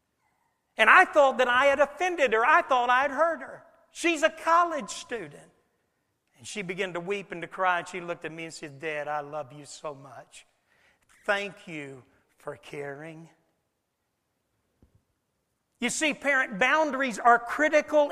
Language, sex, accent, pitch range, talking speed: English, male, American, 210-295 Hz, 160 wpm